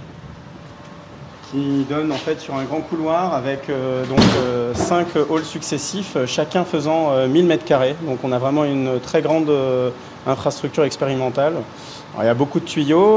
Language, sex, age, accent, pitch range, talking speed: French, male, 30-49, French, 135-165 Hz, 165 wpm